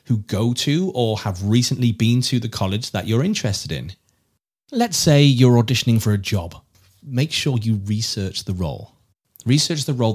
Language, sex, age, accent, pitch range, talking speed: English, male, 30-49, British, 105-130 Hz, 170 wpm